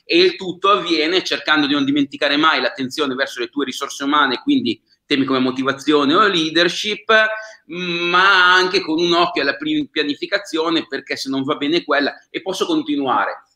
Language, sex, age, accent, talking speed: Italian, male, 30-49, native, 165 wpm